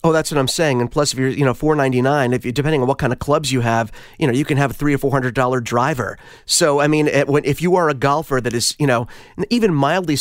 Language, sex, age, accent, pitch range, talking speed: English, male, 30-49, American, 135-175 Hz, 290 wpm